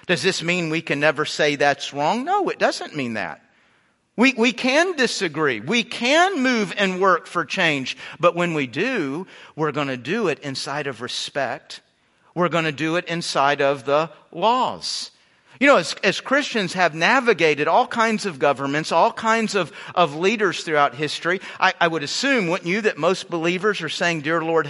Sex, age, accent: male, 50-69, American